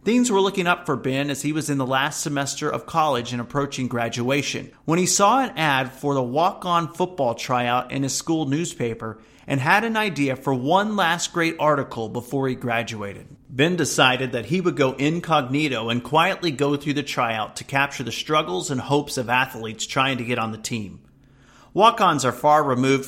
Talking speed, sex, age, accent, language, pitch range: 195 wpm, male, 40-59, American, English, 125-160 Hz